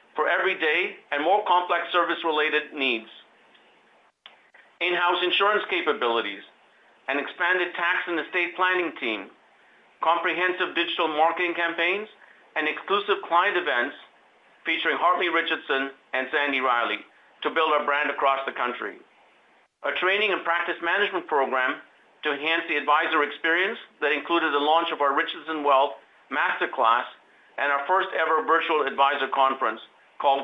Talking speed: 130 wpm